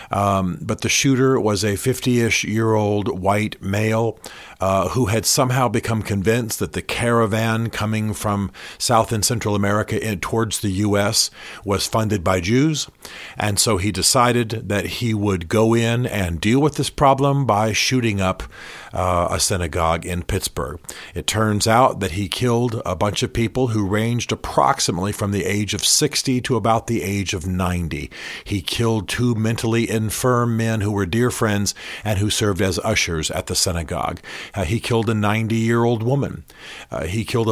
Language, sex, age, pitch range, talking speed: English, male, 50-69, 95-115 Hz, 165 wpm